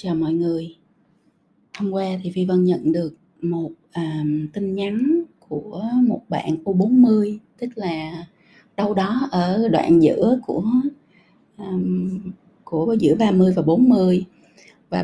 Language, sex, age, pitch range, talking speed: Vietnamese, female, 20-39, 155-215 Hz, 130 wpm